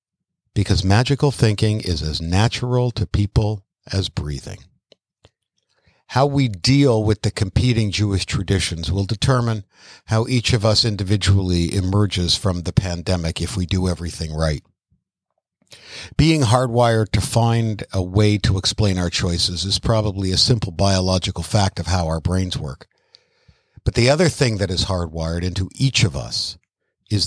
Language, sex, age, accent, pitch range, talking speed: English, male, 60-79, American, 90-115 Hz, 145 wpm